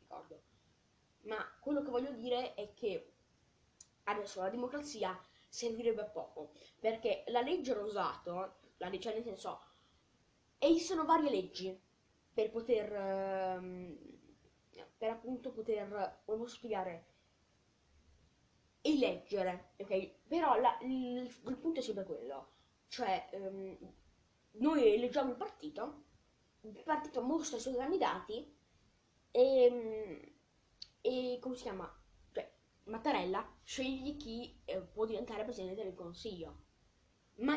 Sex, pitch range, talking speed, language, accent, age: female, 190-285 Hz, 115 wpm, Italian, native, 20-39